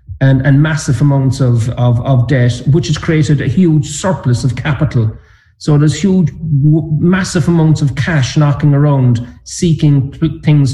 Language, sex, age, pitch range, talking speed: English, male, 40-59, 120-145 Hz, 145 wpm